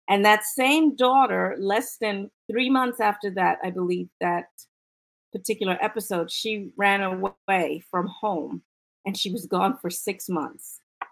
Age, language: 40-59, English